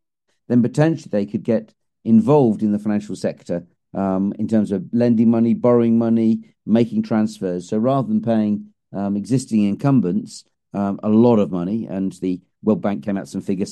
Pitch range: 105-140 Hz